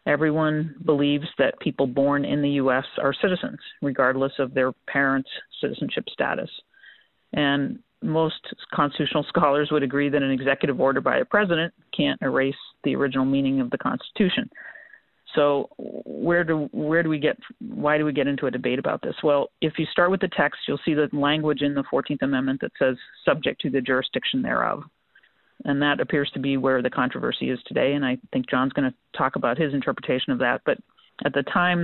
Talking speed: 190 wpm